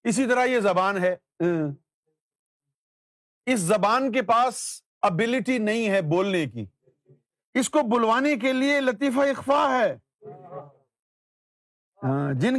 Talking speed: 110 wpm